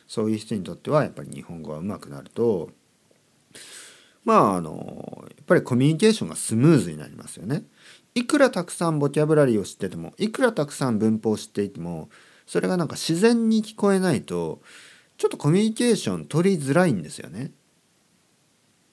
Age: 40-59